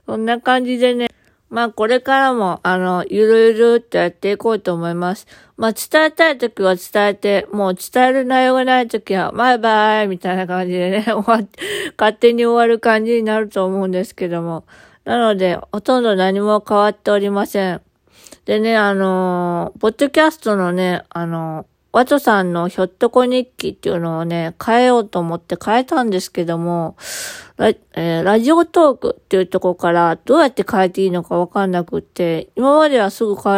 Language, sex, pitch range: Japanese, female, 185-250 Hz